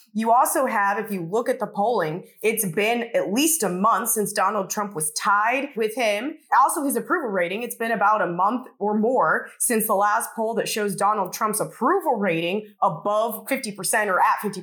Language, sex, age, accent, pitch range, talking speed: English, female, 20-39, American, 200-270 Hz, 200 wpm